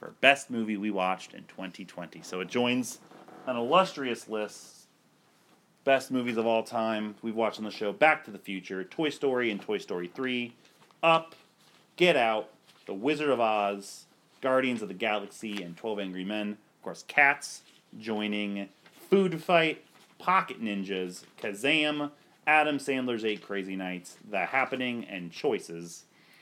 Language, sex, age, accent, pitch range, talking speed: English, male, 30-49, American, 100-135 Hz, 150 wpm